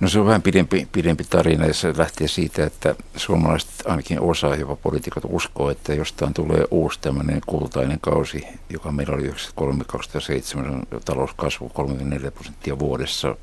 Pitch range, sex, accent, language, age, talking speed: 70-80 Hz, male, native, Finnish, 60-79, 150 wpm